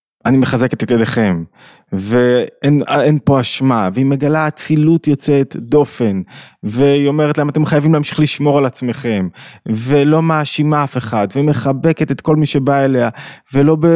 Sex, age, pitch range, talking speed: male, 20-39, 115-155 Hz, 140 wpm